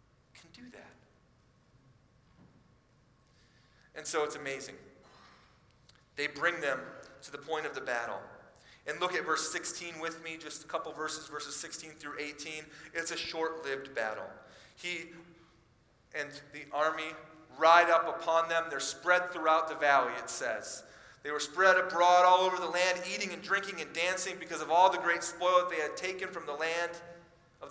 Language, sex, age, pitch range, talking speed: English, male, 30-49, 140-175 Hz, 160 wpm